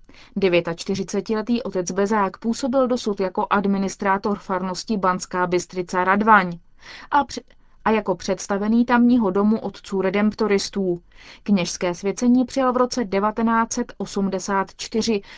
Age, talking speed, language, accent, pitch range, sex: 30-49, 100 wpm, Czech, native, 180-230 Hz, female